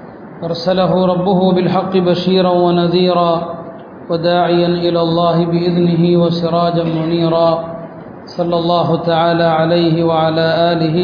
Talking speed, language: 90 wpm, Tamil